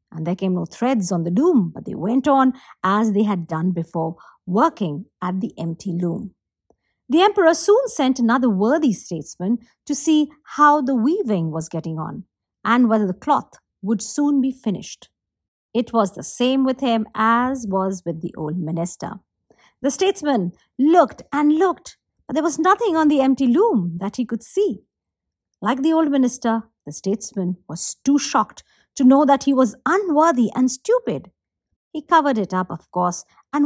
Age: 50-69